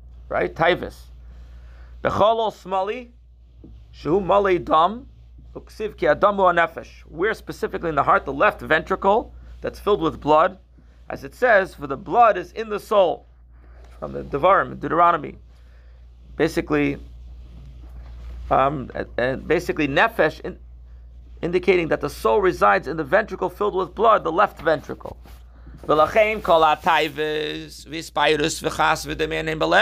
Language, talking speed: English, 105 wpm